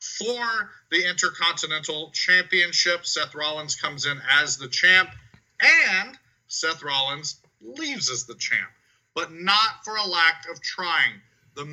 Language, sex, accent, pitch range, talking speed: English, male, American, 145-190 Hz, 135 wpm